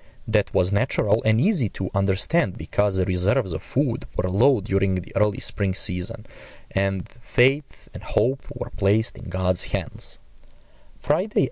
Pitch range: 95-120 Hz